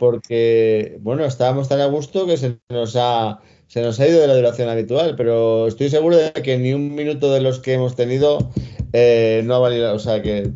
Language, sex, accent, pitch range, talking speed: Spanish, male, Spanish, 110-130 Hz, 215 wpm